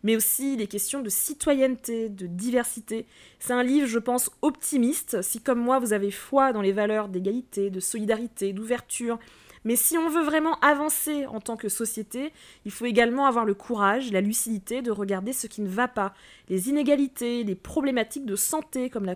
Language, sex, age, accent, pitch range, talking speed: French, female, 20-39, French, 205-250 Hz, 190 wpm